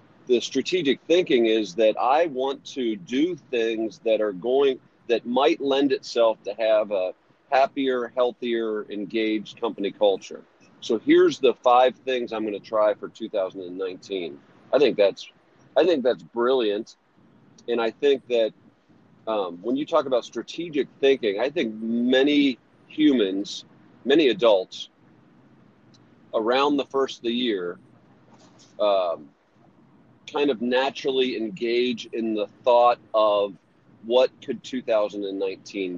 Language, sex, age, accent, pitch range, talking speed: English, male, 40-59, American, 100-135 Hz, 130 wpm